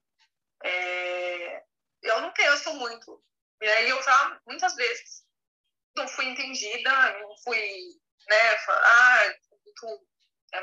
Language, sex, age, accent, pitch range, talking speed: Portuguese, female, 20-39, Brazilian, 205-280 Hz, 125 wpm